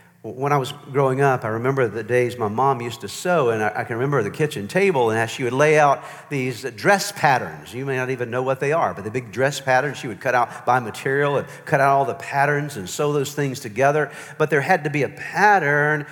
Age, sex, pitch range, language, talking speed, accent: 50-69, male, 135-175 Hz, English, 250 wpm, American